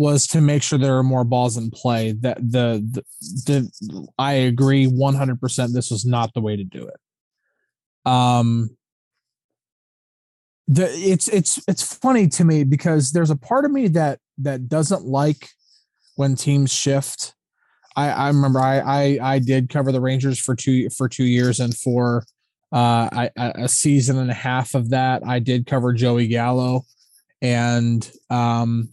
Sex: male